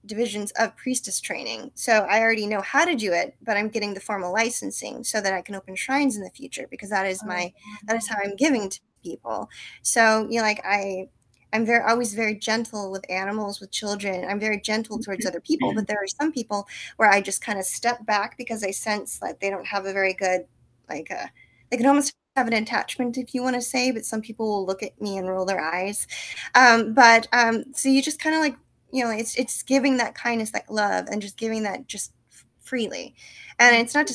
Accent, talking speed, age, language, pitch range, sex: American, 235 wpm, 20-39, English, 195-235 Hz, female